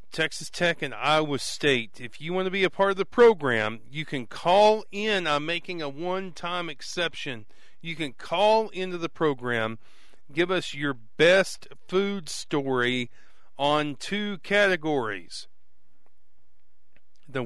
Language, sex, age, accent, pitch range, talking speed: English, male, 40-59, American, 135-175 Hz, 140 wpm